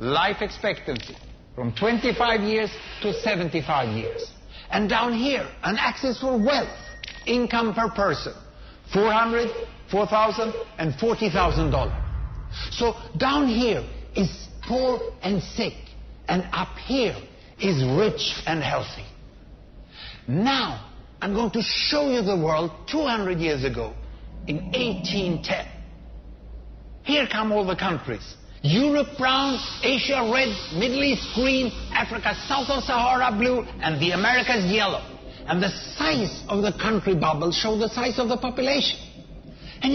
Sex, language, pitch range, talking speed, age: male, English, 185-250 Hz, 130 wpm, 60-79